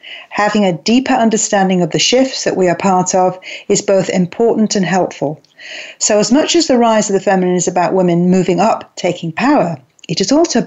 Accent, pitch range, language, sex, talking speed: British, 165-215 Hz, English, female, 210 wpm